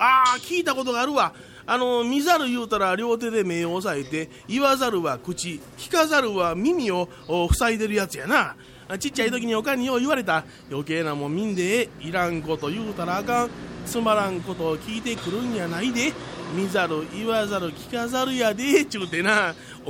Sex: male